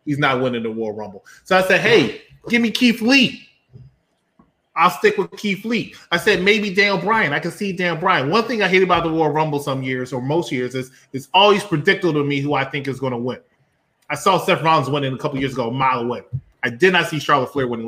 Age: 20-39